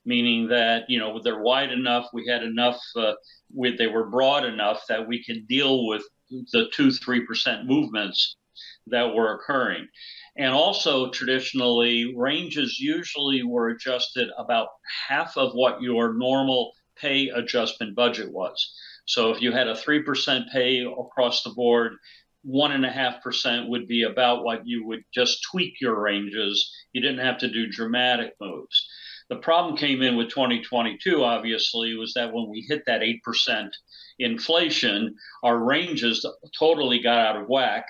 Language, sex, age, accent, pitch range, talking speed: English, male, 50-69, American, 115-140 Hz, 150 wpm